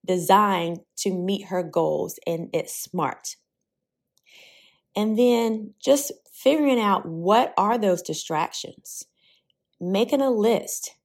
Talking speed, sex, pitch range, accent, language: 110 wpm, female, 175-230 Hz, American, English